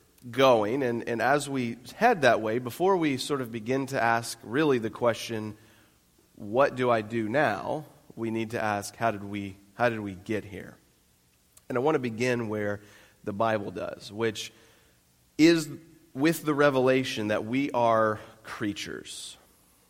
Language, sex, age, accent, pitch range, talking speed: English, male, 30-49, American, 100-125 Hz, 160 wpm